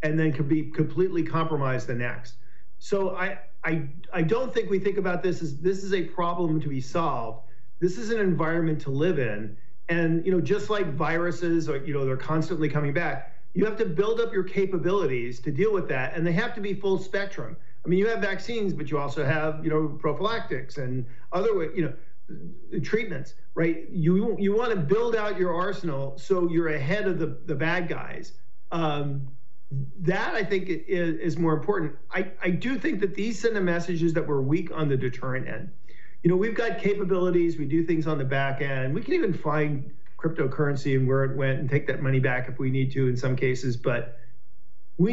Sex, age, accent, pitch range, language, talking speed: male, 50-69, American, 140-185 Hz, English, 210 wpm